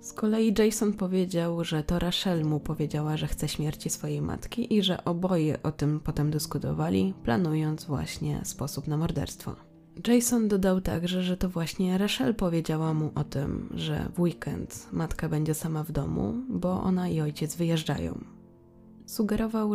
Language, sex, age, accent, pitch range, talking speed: Polish, female, 20-39, native, 155-200 Hz, 155 wpm